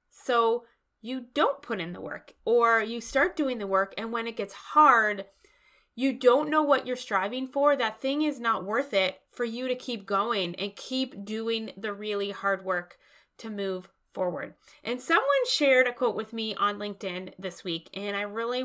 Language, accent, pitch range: English, American, 205-265 Hz